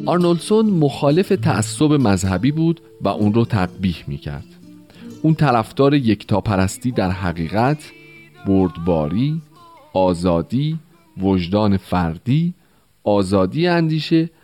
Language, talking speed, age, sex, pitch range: Persian, 85 wpm, 40-59, male, 95-150 Hz